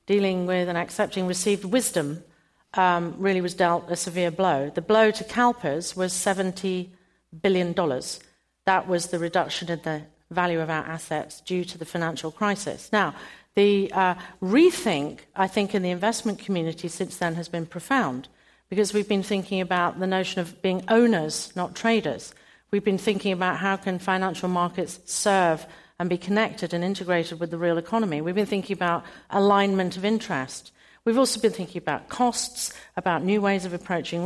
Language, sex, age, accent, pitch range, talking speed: English, female, 50-69, British, 175-210 Hz, 170 wpm